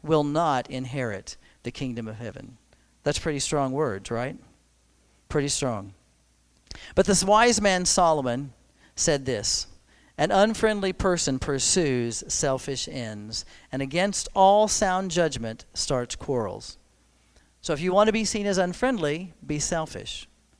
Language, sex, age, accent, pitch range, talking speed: English, male, 40-59, American, 120-180 Hz, 130 wpm